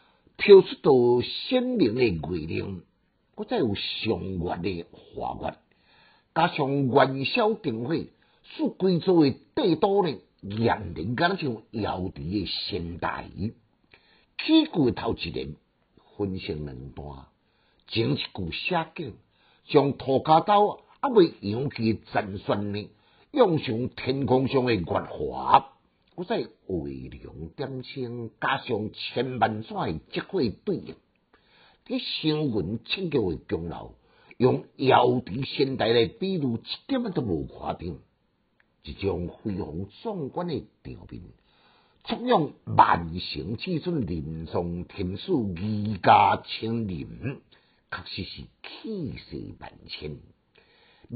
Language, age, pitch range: Chinese, 50-69, 100-160 Hz